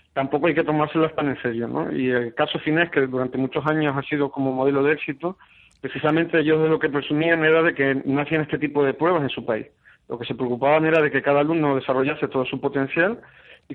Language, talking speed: Spanish, 230 wpm